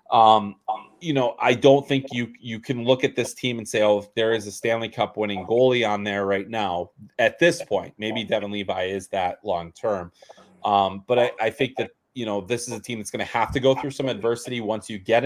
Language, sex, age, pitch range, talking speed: English, male, 30-49, 100-115 Hz, 235 wpm